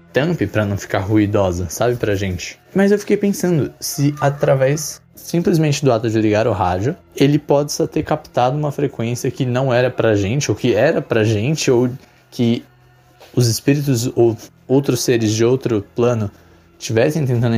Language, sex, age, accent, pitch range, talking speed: Portuguese, male, 20-39, Brazilian, 110-145 Hz, 165 wpm